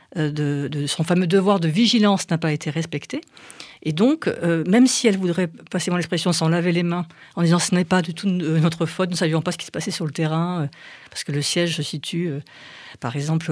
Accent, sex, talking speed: French, female, 245 wpm